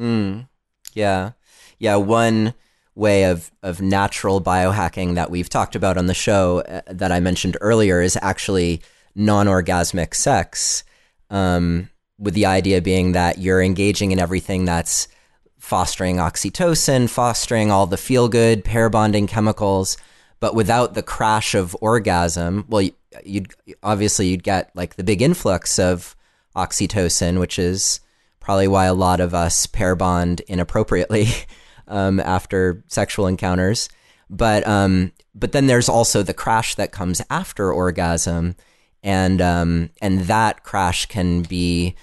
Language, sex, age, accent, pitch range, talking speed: English, male, 30-49, American, 90-105 Hz, 140 wpm